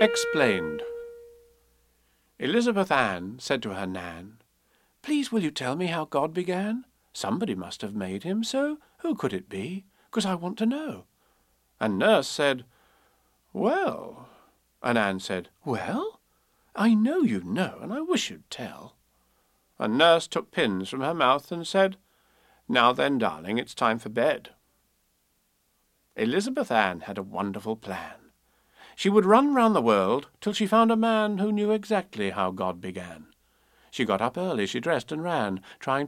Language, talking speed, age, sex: English, 160 wpm, 50-69, male